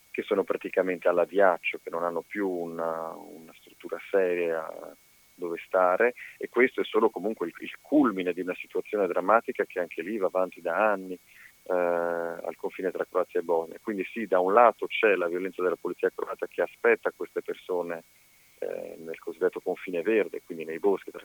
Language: Italian